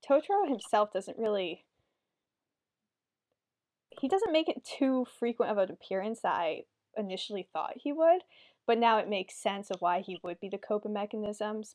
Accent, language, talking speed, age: American, English, 165 wpm, 10-29